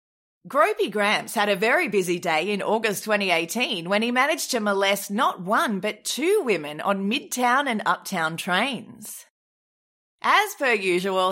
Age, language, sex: 30-49, English, female